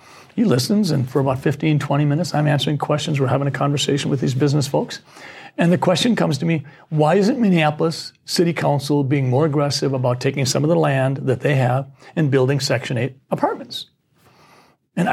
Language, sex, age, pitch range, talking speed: English, male, 40-59, 135-170 Hz, 190 wpm